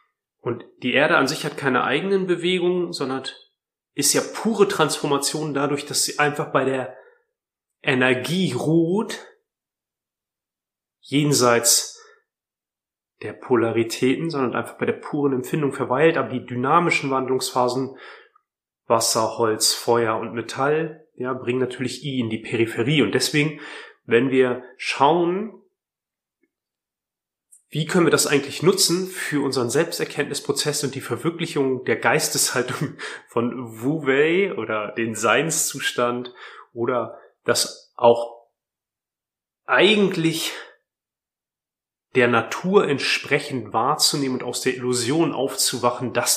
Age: 30-49